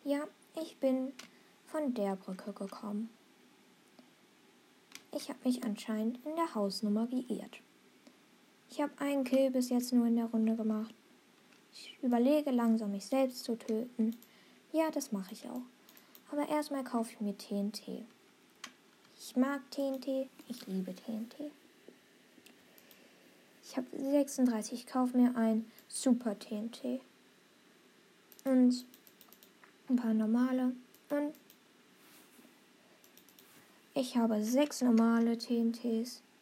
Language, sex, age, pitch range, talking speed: German, female, 20-39, 225-275 Hz, 110 wpm